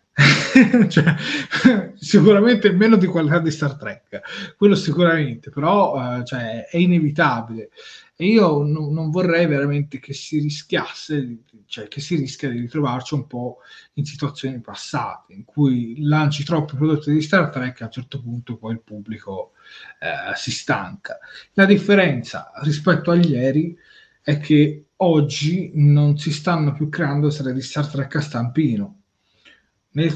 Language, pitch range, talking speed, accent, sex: Italian, 135-180 Hz, 145 wpm, native, male